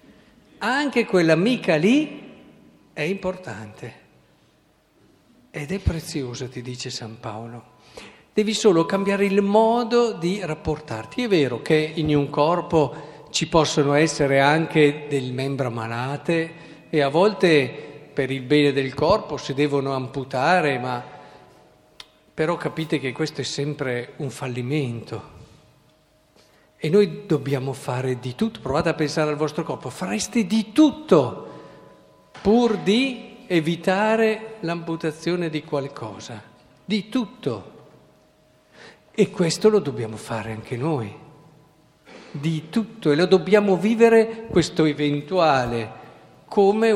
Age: 50-69